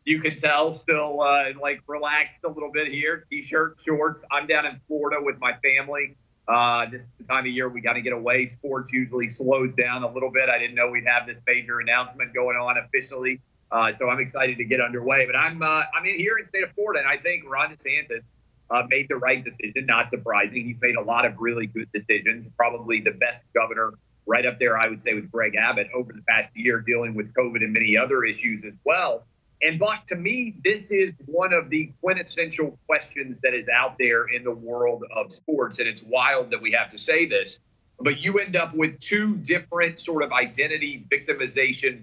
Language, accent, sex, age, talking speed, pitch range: English, American, male, 30-49, 220 wpm, 120-155 Hz